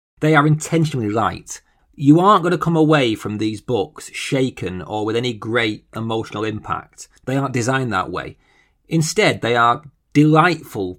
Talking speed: 160 wpm